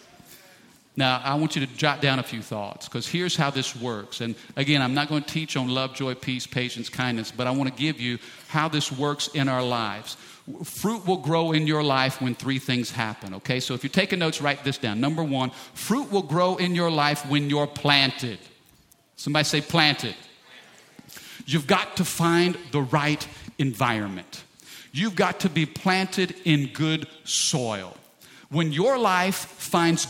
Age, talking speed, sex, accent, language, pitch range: 50-69, 185 wpm, male, American, English, 135-180 Hz